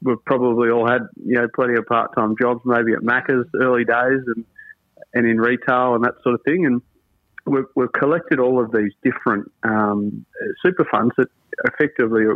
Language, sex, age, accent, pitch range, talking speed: English, male, 30-49, Australian, 105-125 Hz, 180 wpm